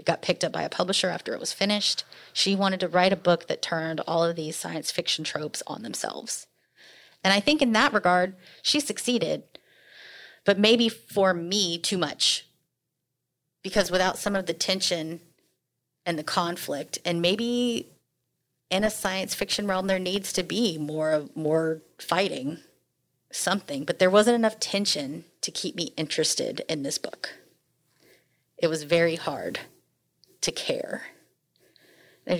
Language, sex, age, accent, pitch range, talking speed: English, female, 30-49, American, 165-205 Hz, 155 wpm